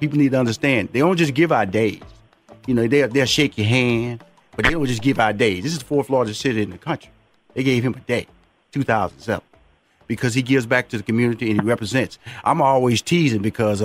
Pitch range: 120-195 Hz